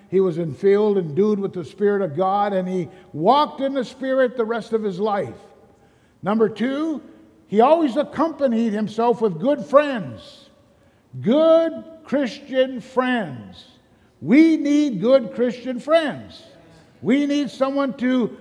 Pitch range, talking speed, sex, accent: 170-260 Hz, 135 wpm, male, American